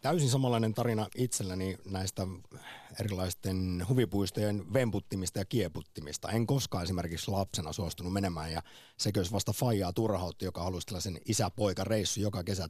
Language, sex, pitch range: Finnish, male, 90-115 Hz